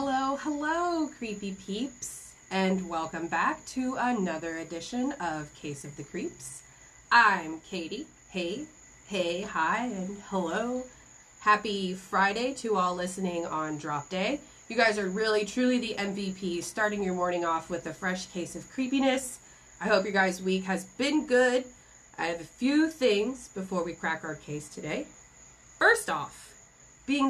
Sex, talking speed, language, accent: female, 150 wpm, English, American